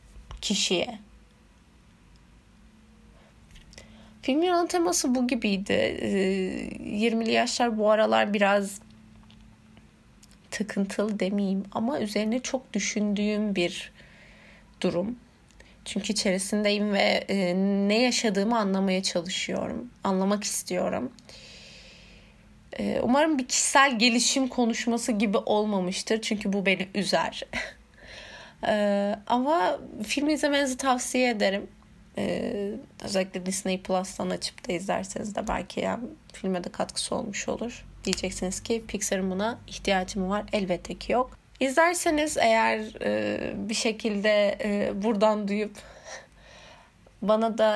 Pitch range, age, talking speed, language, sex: 190-235 Hz, 30-49, 100 wpm, Turkish, female